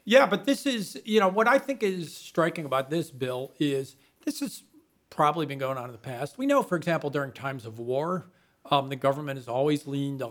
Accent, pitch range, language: American, 130-170 Hz, English